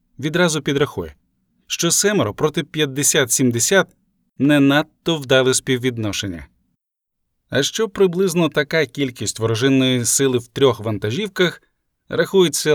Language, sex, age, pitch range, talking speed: Ukrainian, male, 20-39, 120-155 Hz, 100 wpm